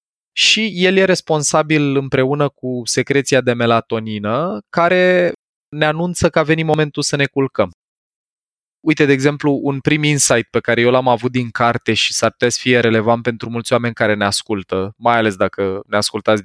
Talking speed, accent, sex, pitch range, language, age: 180 wpm, native, male, 110-150 Hz, Romanian, 20-39